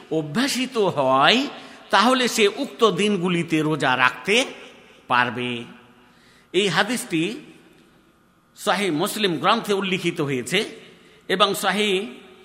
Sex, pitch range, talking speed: male, 165-220 Hz, 60 wpm